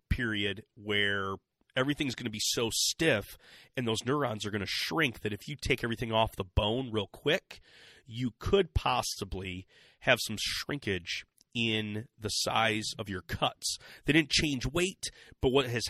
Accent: American